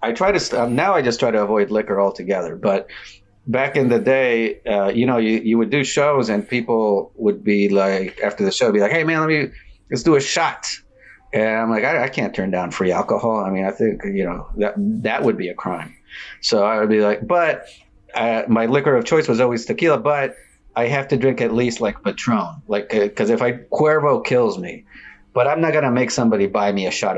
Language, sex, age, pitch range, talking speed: English, male, 40-59, 100-130 Hz, 235 wpm